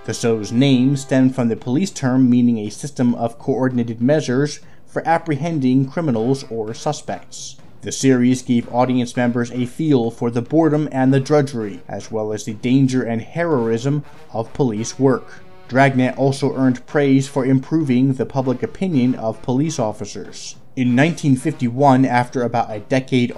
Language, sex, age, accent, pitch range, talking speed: English, male, 20-39, American, 115-140 Hz, 155 wpm